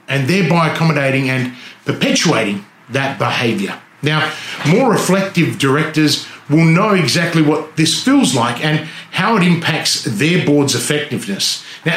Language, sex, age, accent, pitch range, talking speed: English, male, 30-49, Australian, 140-175 Hz, 130 wpm